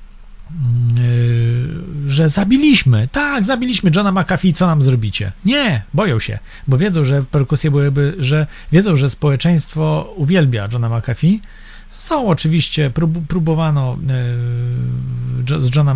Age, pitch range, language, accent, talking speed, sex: 40-59, 120-150 Hz, Polish, native, 110 wpm, male